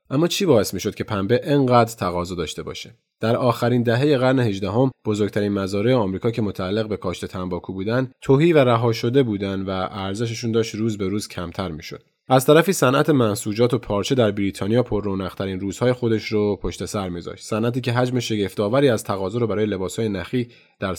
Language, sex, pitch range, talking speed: Persian, male, 95-120 Hz, 175 wpm